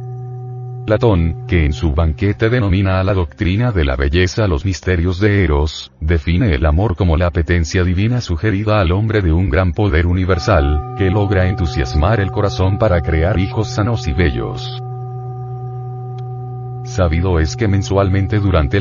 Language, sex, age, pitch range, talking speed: Spanish, male, 40-59, 80-105 Hz, 150 wpm